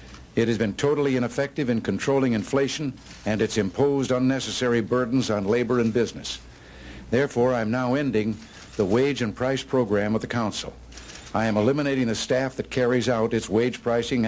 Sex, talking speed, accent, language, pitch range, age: male, 170 wpm, American, English, 110-130 Hz, 60-79